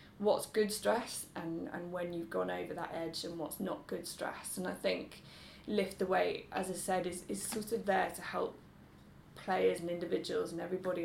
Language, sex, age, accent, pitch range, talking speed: English, female, 10-29, British, 165-195 Hz, 200 wpm